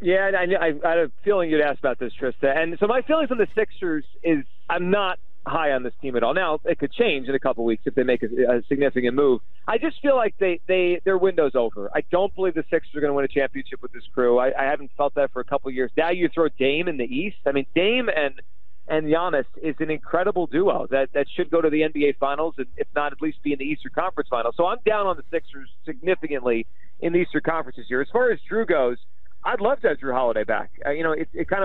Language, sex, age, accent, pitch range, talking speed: English, male, 40-59, American, 140-185 Hz, 275 wpm